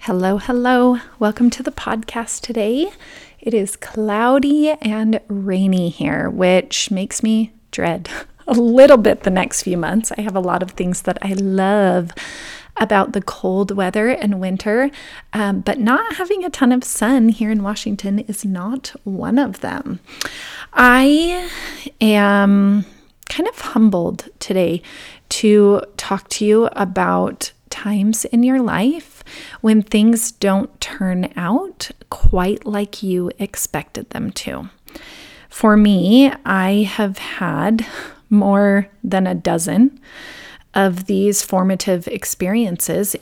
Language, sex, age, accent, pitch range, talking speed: English, female, 30-49, American, 195-240 Hz, 130 wpm